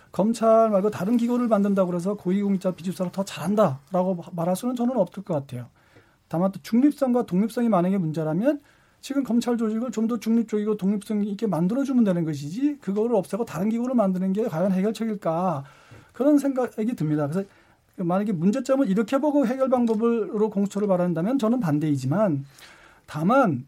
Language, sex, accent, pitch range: Korean, male, native, 165-230 Hz